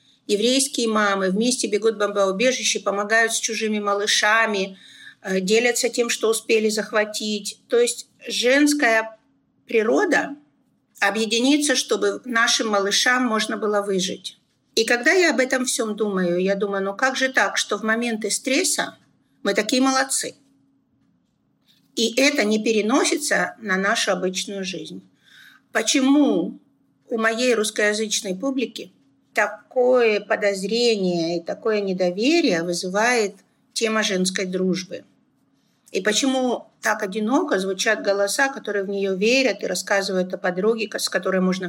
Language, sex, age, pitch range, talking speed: Russian, female, 50-69, 200-250 Hz, 120 wpm